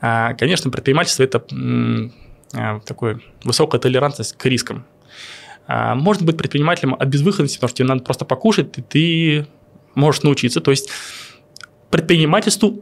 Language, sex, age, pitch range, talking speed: Russian, male, 20-39, 130-170 Hz, 145 wpm